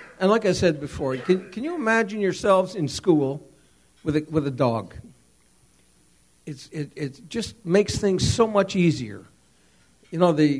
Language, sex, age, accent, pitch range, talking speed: English, male, 60-79, American, 130-160 Hz, 165 wpm